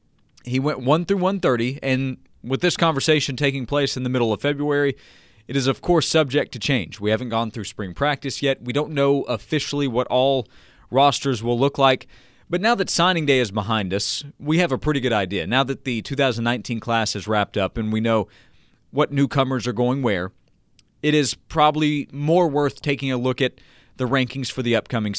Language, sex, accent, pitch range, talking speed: English, male, American, 120-160 Hz, 200 wpm